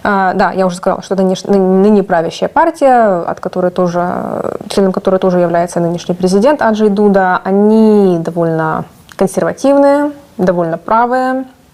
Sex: female